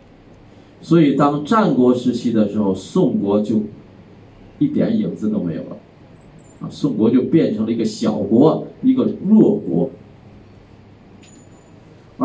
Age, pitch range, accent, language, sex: 50-69, 110-185 Hz, native, Chinese, male